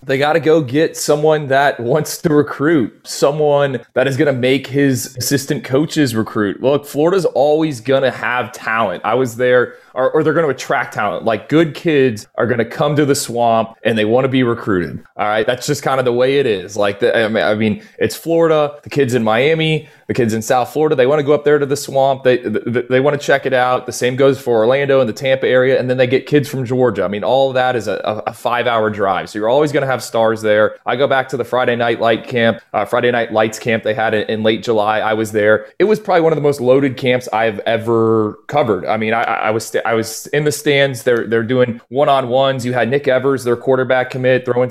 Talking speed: 255 wpm